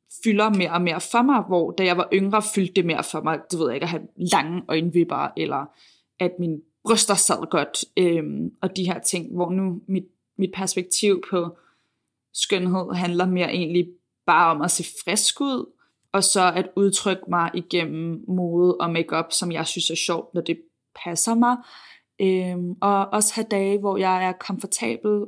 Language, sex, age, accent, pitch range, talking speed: Danish, female, 20-39, native, 175-200 Hz, 185 wpm